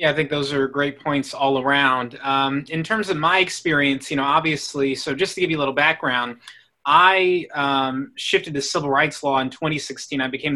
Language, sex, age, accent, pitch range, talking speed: English, male, 30-49, American, 135-155 Hz, 210 wpm